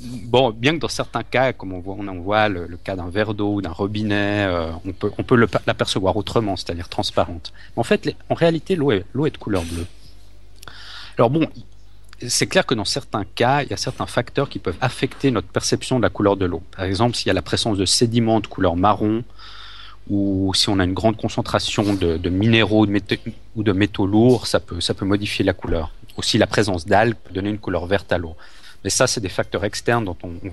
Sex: male